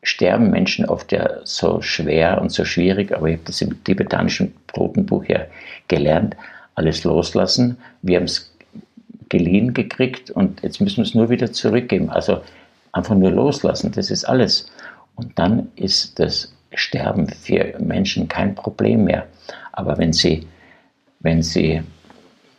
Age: 60-79